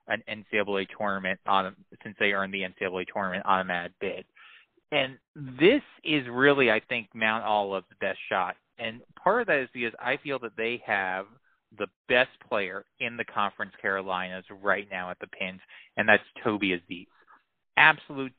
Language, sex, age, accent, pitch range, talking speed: English, male, 30-49, American, 105-130 Hz, 170 wpm